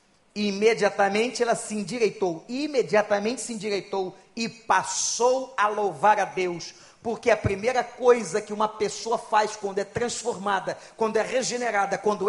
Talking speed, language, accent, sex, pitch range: 135 wpm, Portuguese, Brazilian, male, 210-295 Hz